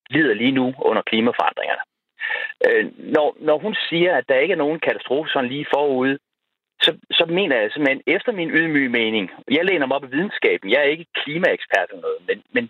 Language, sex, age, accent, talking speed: Danish, male, 40-59, native, 205 wpm